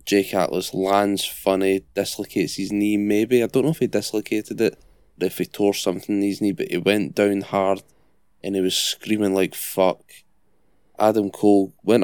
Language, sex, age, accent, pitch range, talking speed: English, male, 20-39, British, 95-110 Hz, 185 wpm